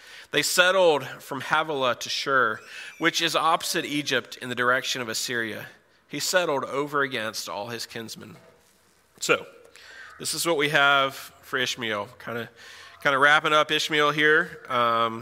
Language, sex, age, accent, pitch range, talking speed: English, male, 30-49, American, 115-140 Hz, 145 wpm